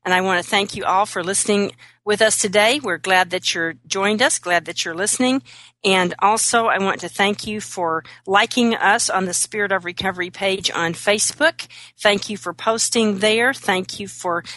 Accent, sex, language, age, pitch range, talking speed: American, female, English, 40-59, 165-200 Hz, 200 wpm